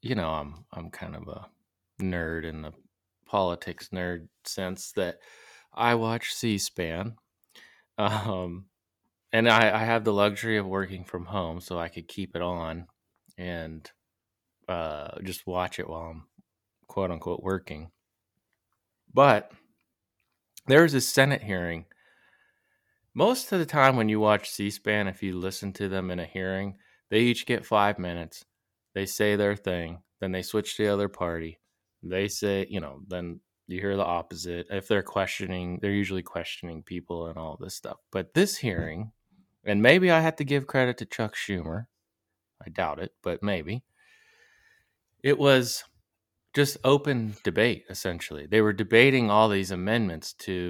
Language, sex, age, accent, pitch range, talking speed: English, male, 20-39, American, 90-110 Hz, 155 wpm